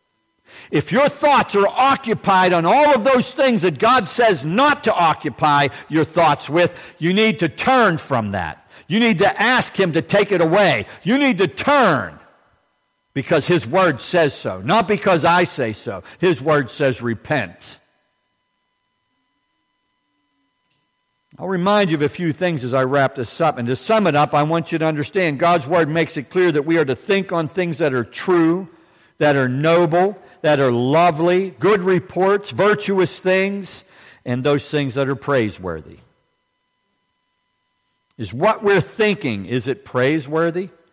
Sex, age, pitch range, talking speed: male, 60-79, 145-190 Hz, 165 wpm